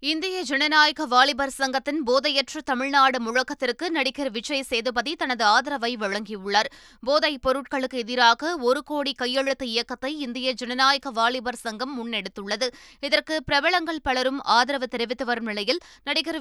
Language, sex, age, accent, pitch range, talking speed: Tamil, female, 20-39, native, 240-285 Hz, 115 wpm